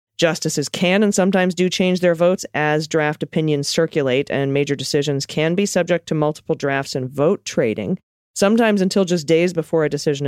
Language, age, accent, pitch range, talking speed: English, 30-49, American, 140-180 Hz, 180 wpm